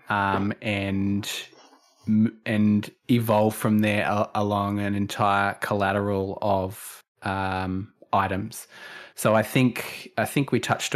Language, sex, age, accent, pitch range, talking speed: English, male, 20-39, Australian, 100-110 Hz, 115 wpm